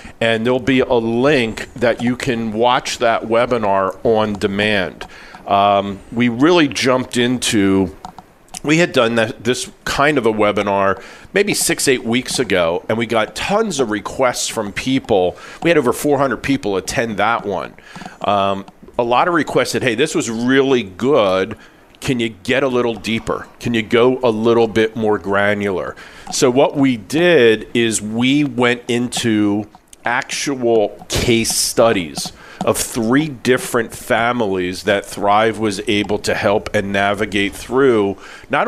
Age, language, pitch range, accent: 40-59, English, 105-130 Hz, American